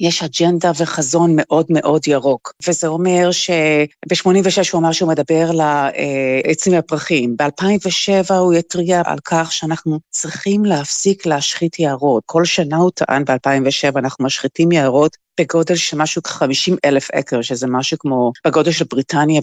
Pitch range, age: 145-180 Hz, 40-59